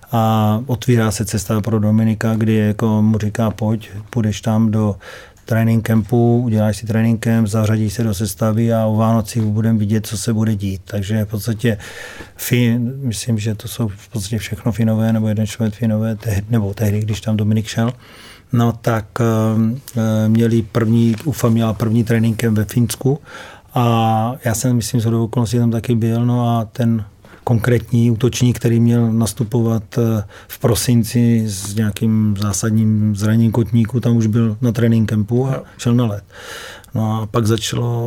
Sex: male